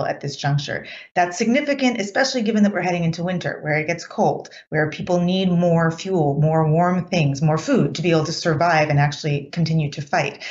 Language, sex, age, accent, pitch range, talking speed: English, female, 30-49, American, 160-195 Hz, 205 wpm